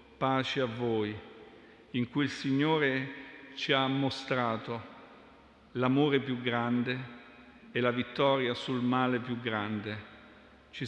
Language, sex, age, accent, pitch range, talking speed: Italian, male, 50-69, native, 115-135 Hz, 115 wpm